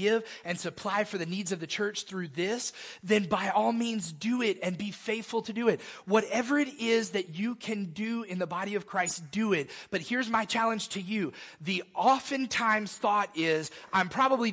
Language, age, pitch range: English, 30-49, 150-205 Hz